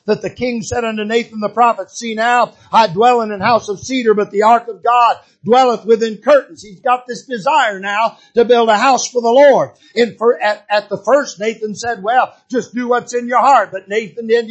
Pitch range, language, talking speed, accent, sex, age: 230-255 Hz, English, 220 wpm, American, male, 50-69